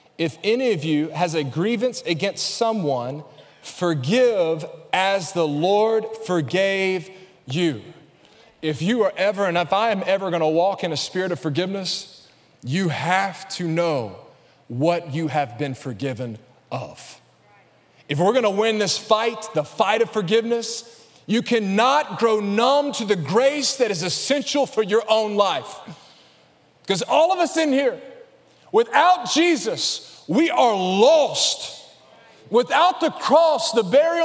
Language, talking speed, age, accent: English, 140 wpm, 30-49, American